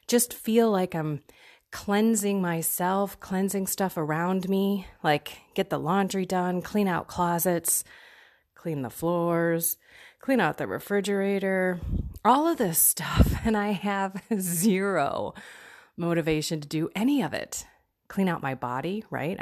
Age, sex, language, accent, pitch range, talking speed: 30-49, female, English, American, 155-195 Hz, 135 wpm